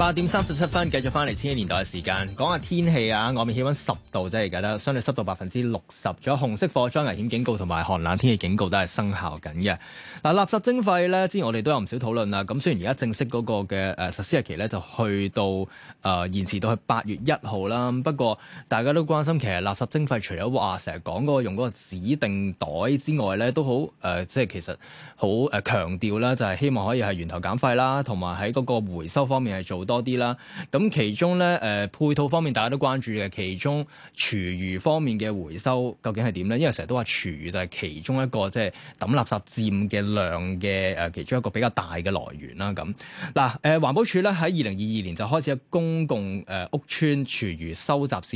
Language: Chinese